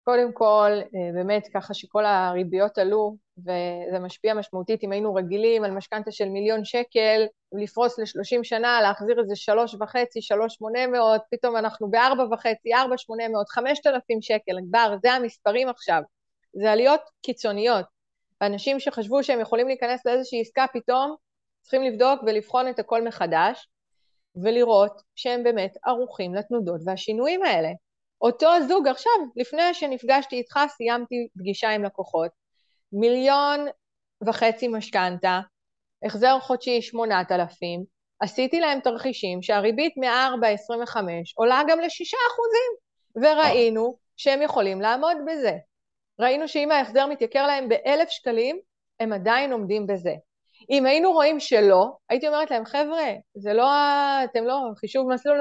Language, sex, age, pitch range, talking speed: Hebrew, female, 30-49, 210-270 Hz, 130 wpm